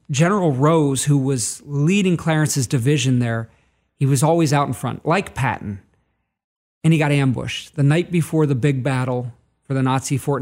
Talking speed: 175 wpm